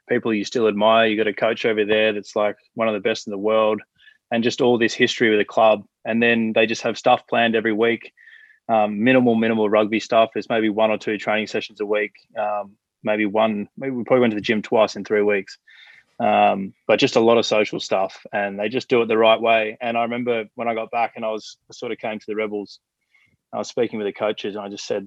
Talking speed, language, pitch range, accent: 255 wpm, English, 105-115 Hz, Australian